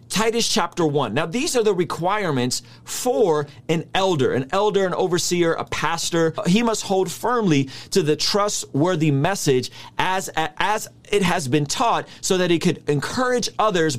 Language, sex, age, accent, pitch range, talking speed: English, male, 30-49, American, 140-205 Hz, 160 wpm